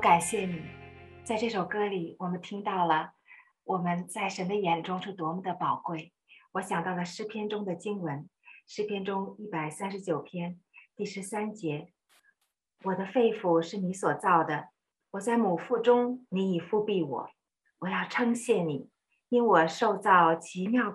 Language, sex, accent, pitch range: Chinese, female, native, 175-225 Hz